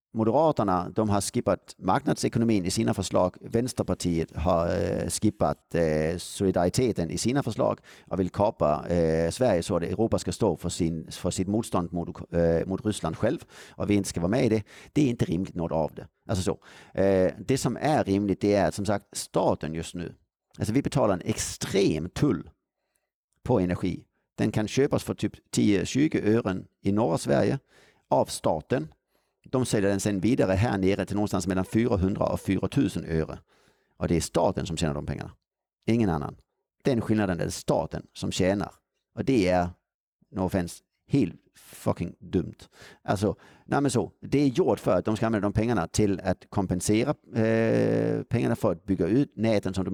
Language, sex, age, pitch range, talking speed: Swedish, male, 50-69, 85-110 Hz, 175 wpm